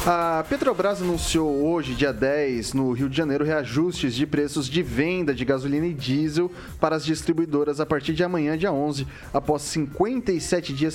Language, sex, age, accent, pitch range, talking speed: Portuguese, male, 20-39, Brazilian, 130-160 Hz, 170 wpm